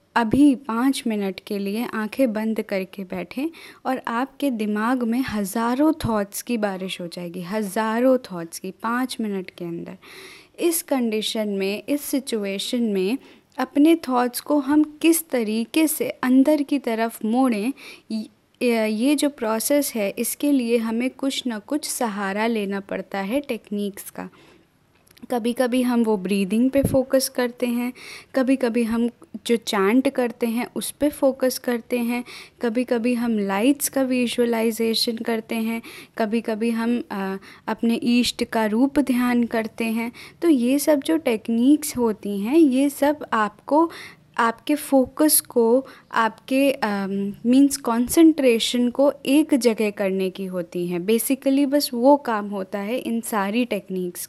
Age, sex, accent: 20-39, female, native